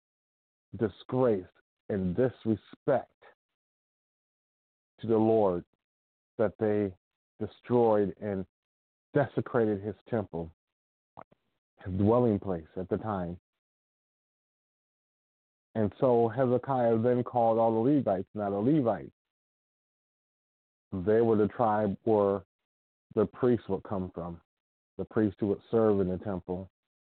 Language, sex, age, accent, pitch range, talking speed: English, male, 40-59, American, 95-115 Hz, 105 wpm